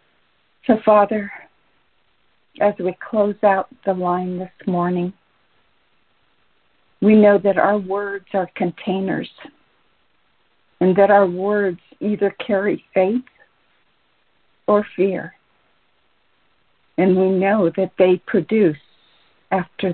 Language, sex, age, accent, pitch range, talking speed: English, female, 50-69, American, 190-220 Hz, 100 wpm